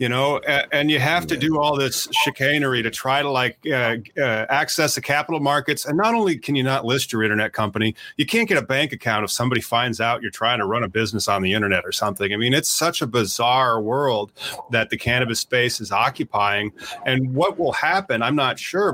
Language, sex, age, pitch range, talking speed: English, male, 30-49, 115-145 Hz, 225 wpm